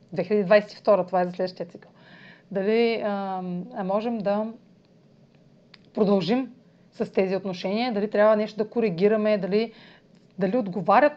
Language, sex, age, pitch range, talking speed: Bulgarian, female, 30-49, 185-225 Hz, 120 wpm